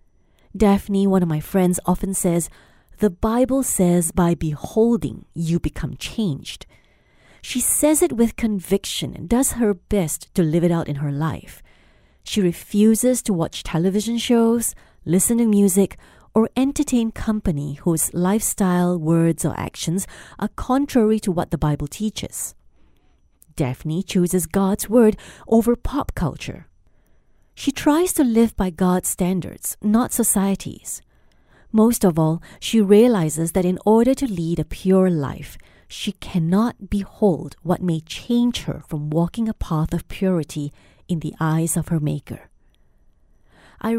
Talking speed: 140 wpm